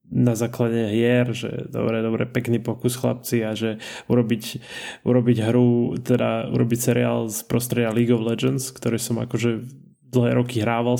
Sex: male